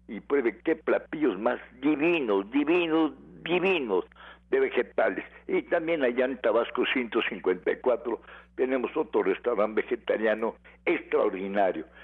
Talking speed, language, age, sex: 105 wpm, Spanish, 60-79, male